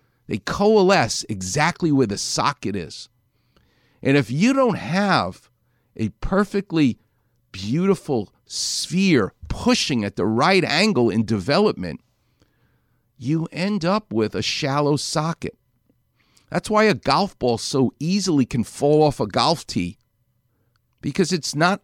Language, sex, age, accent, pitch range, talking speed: English, male, 50-69, American, 115-175 Hz, 125 wpm